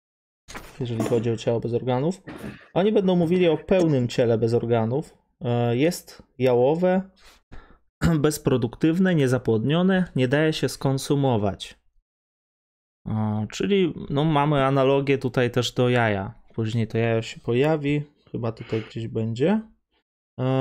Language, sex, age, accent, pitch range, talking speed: Polish, male, 20-39, native, 115-145 Hz, 115 wpm